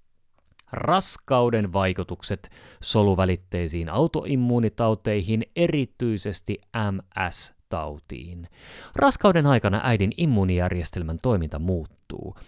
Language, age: Finnish, 30-49